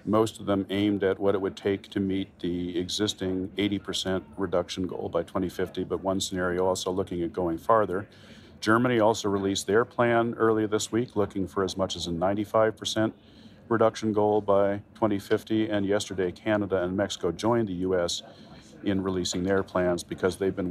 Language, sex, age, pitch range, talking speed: English, male, 40-59, 95-110 Hz, 175 wpm